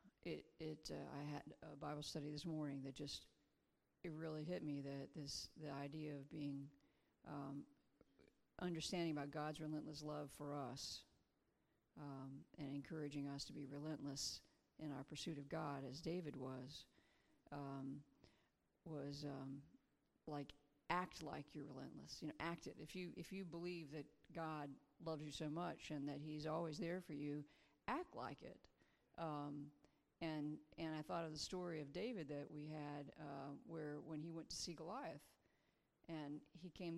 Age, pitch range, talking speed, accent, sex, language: 40-59, 145-170 Hz, 165 wpm, American, female, English